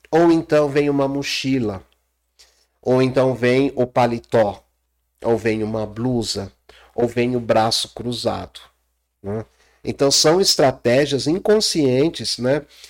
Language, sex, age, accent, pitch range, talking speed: Portuguese, male, 50-69, Brazilian, 110-160 Hz, 115 wpm